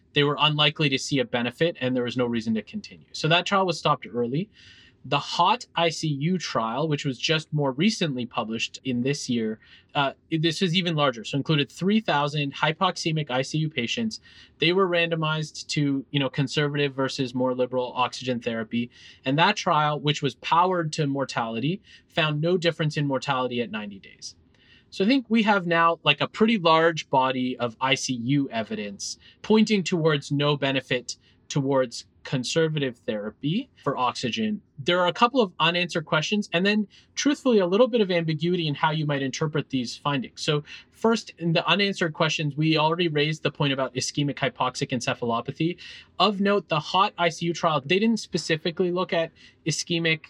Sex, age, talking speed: male, 20-39, 170 wpm